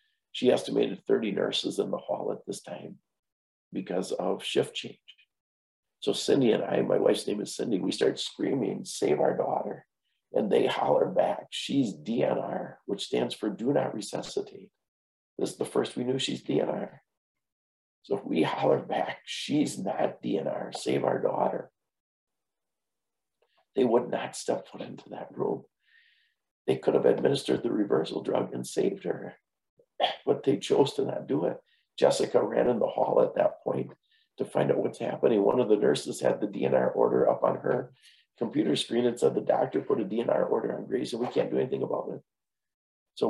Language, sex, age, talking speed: English, male, 50-69, 180 wpm